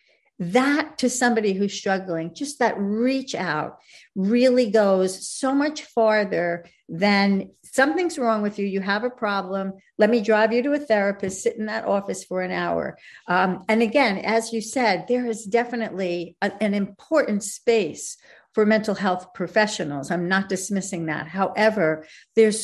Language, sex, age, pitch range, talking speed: English, female, 50-69, 180-225 Hz, 155 wpm